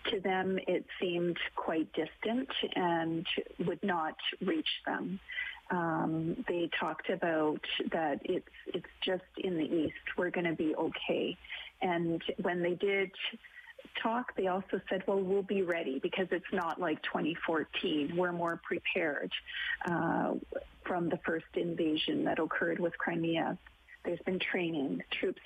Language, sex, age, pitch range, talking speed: English, female, 40-59, 175-225 Hz, 140 wpm